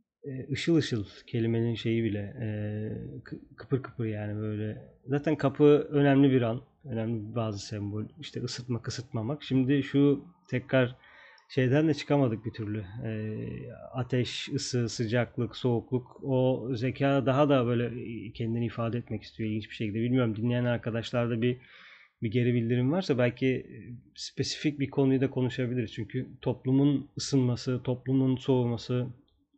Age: 30-49